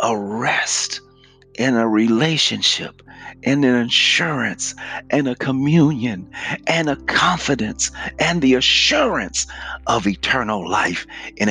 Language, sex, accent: English, male, American